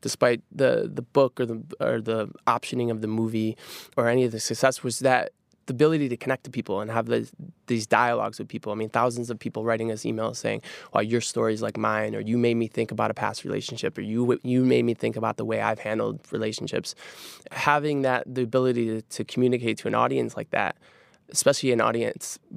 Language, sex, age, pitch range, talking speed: English, male, 20-39, 110-125 Hz, 220 wpm